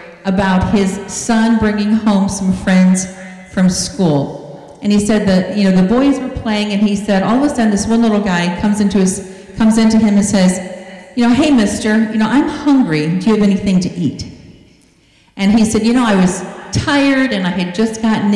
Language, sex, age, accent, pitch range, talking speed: English, female, 40-59, American, 175-215 Hz, 205 wpm